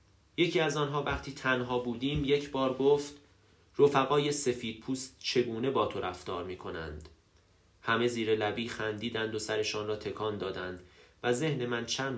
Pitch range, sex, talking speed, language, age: 100-125 Hz, male, 155 wpm, Persian, 30-49